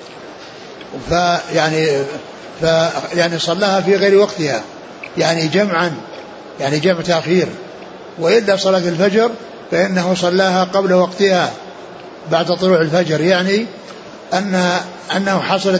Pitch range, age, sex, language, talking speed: 175-200 Hz, 60-79, male, Arabic, 105 wpm